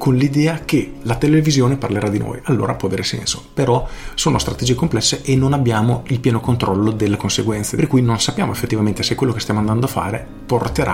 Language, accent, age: Italian, native, 40-59